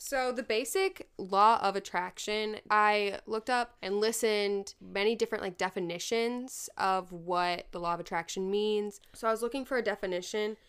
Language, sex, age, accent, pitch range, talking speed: English, female, 10-29, American, 180-220 Hz, 165 wpm